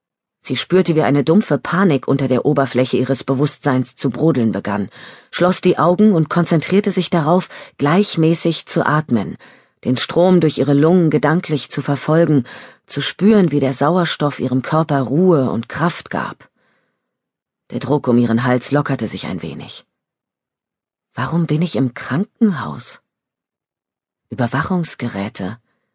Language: German